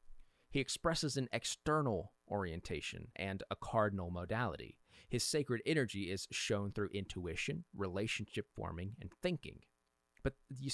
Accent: American